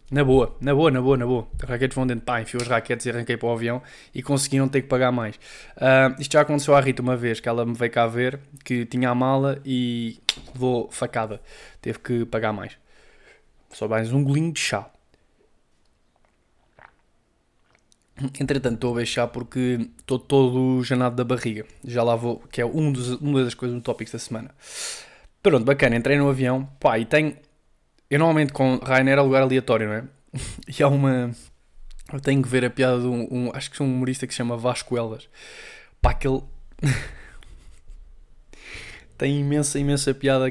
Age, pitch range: 20-39, 120-140 Hz